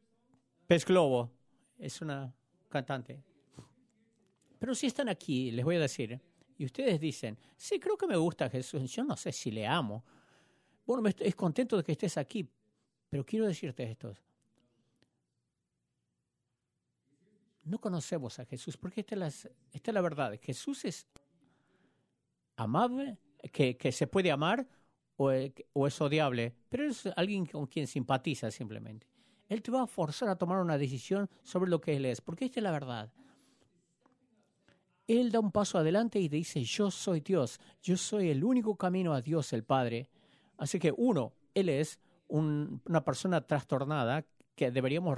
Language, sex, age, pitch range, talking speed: English, male, 50-69, 135-195 Hz, 155 wpm